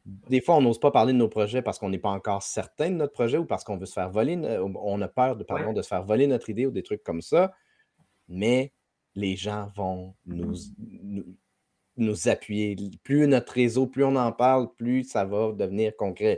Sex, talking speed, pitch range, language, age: male, 225 wpm, 100-125 Hz, French, 30-49